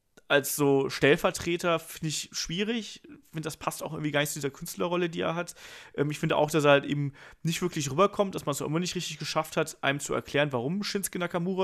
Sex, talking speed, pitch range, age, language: male, 230 wpm, 140-175 Hz, 30-49, German